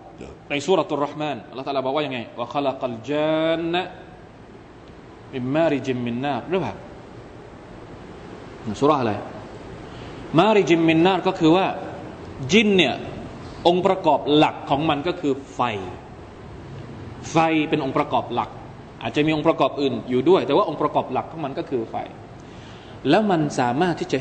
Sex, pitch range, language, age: male, 145-205 Hz, Thai, 20-39